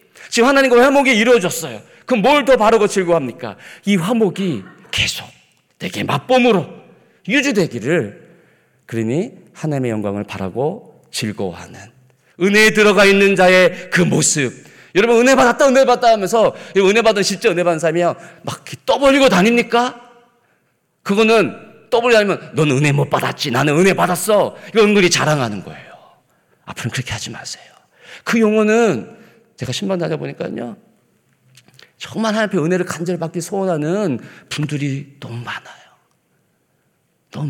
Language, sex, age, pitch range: Korean, male, 40-59, 130-215 Hz